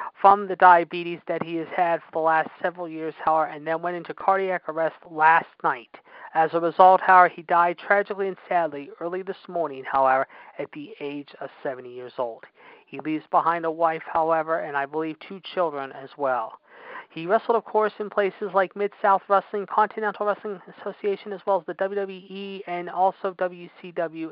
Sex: male